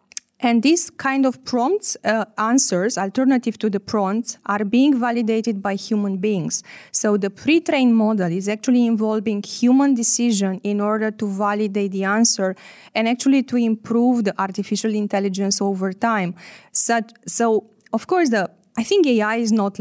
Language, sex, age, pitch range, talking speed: Czech, female, 20-39, 195-235 Hz, 155 wpm